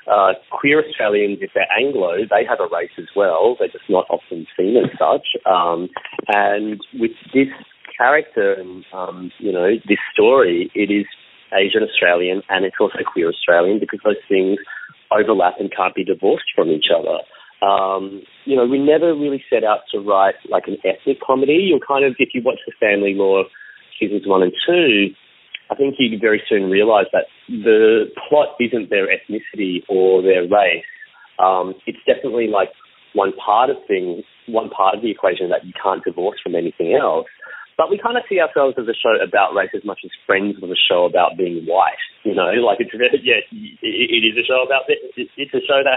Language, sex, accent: English, male, Australian